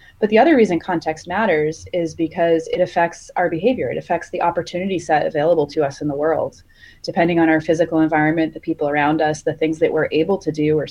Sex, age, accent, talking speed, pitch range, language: female, 30-49, American, 220 wpm, 160-195 Hz, English